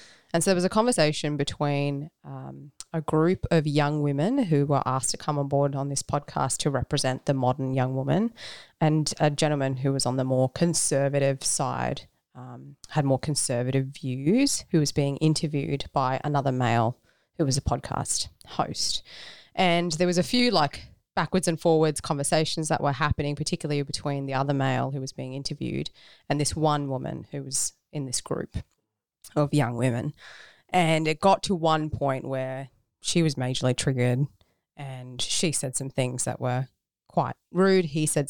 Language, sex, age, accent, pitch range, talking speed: English, female, 20-39, Australian, 135-160 Hz, 175 wpm